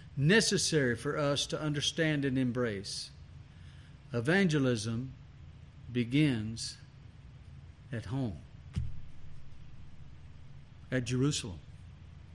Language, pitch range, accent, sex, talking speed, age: English, 130-195 Hz, American, male, 65 wpm, 60-79